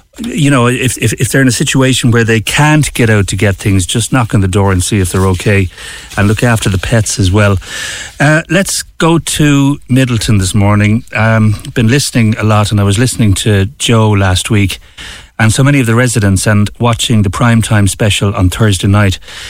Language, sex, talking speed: English, male, 210 wpm